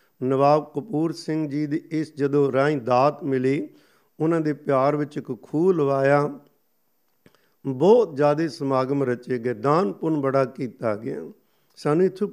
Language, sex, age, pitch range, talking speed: Punjabi, male, 50-69, 130-155 Hz, 135 wpm